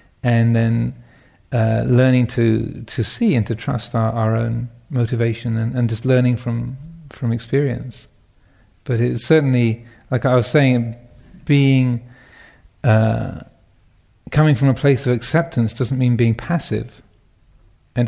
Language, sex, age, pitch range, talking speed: English, male, 40-59, 115-135 Hz, 135 wpm